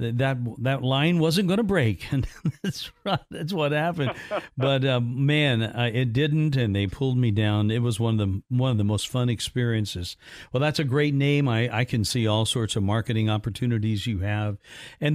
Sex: male